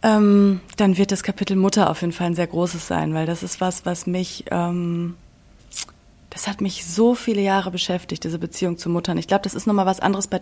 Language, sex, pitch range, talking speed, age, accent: German, female, 180-215 Hz, 225 wpm, 20-39, German